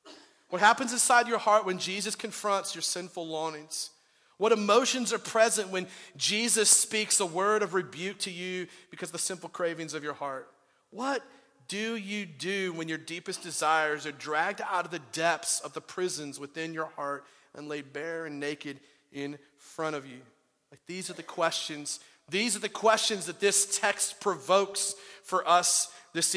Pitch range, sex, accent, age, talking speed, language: 165-210 Hz, male, American, 40-59, 175 wpm, English